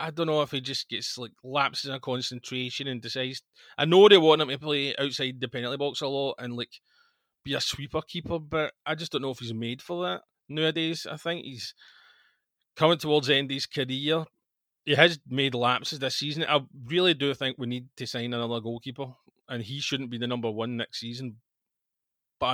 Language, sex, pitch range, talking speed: English, male, 120-150 Hz, 210 wpm